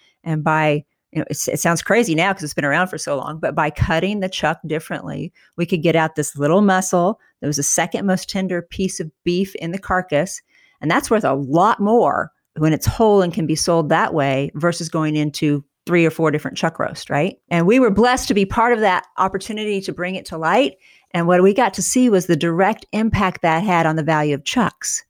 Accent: American